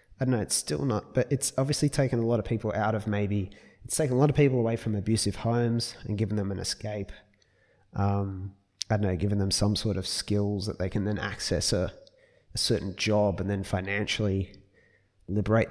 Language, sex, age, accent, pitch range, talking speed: English, male, 20-39, Australian, 100-120 Hz, 210 wpm